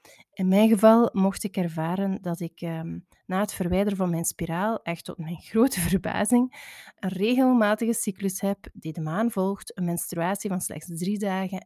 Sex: female